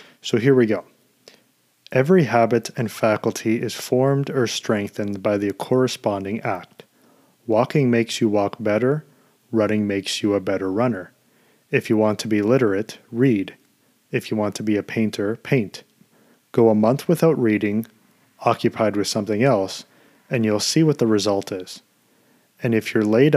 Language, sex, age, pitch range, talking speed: English, male, 30-49, 105-125 Hz, 160 wpm